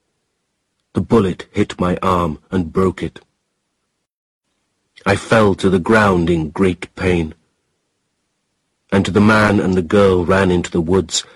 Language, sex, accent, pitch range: Chinese, male, British, 80-95 Hz